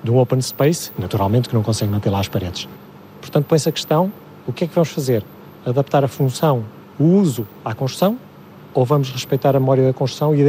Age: 30-49